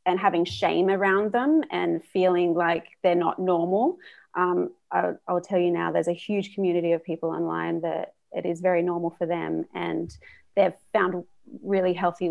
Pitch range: 175-210 Hz